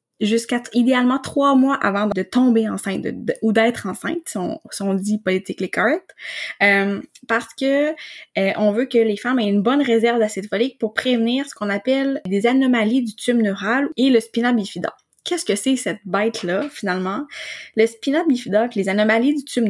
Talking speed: 190 wpm